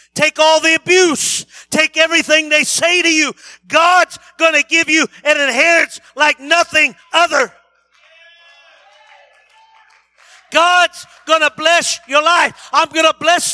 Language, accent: English, American